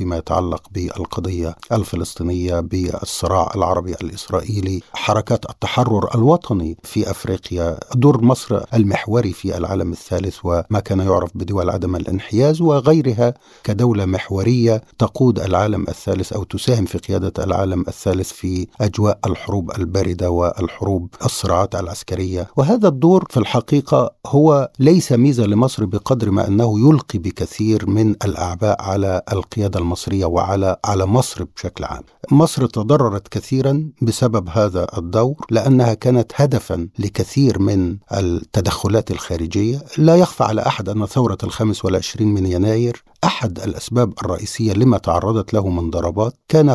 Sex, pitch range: male, 95-120 Hz